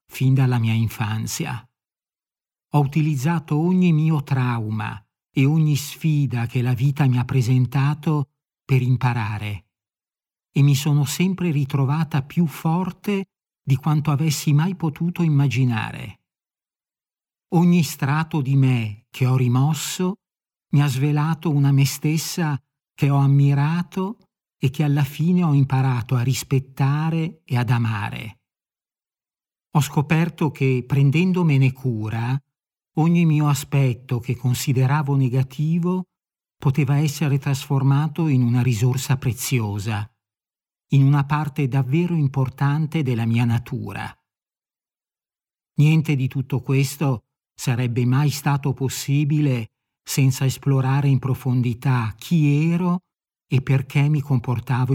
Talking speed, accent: 115 wpm, native